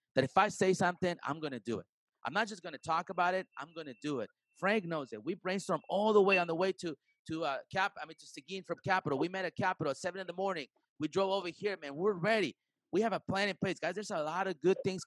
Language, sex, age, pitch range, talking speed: English, male, 30-49, 155-195 Hz, 280 wpm